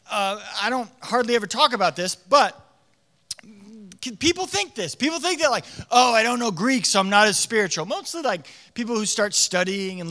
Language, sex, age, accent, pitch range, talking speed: English, male, 30-49, American, 175-240 Hz, 195 wpm